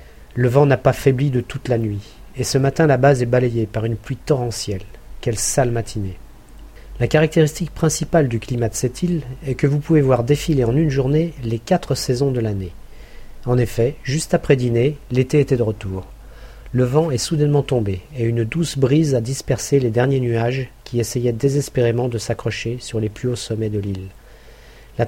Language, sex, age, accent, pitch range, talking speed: French, male, 40-59, French, 115-140 Hz, 195 wpm